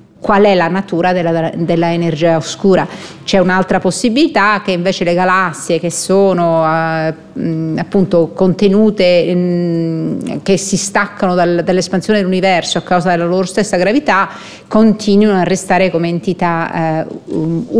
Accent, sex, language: native, female, Italian